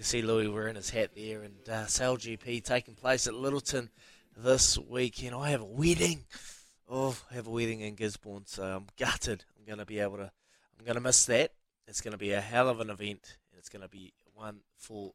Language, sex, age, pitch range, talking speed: English, male, 20-39, 110-155 Hz, 210 wpm